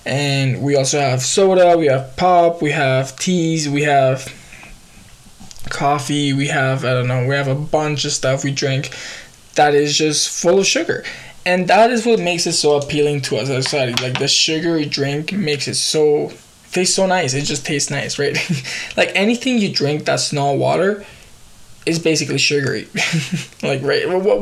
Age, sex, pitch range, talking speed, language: 20-39, male, 135-170 Hz, 180 wpm, English